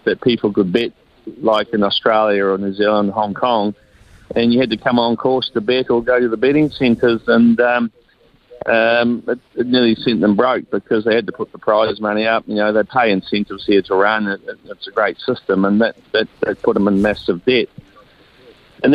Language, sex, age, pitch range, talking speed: English, male, 50-69, 110-135 Hz, 215 wpm